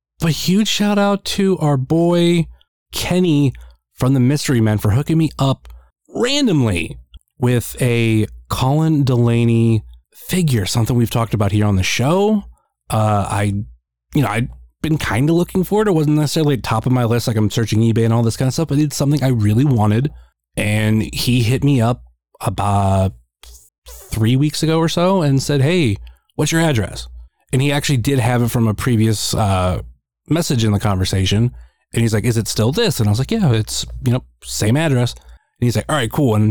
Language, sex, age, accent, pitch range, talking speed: English, male, 30-49, American, 100-140 Hz, 200 wpm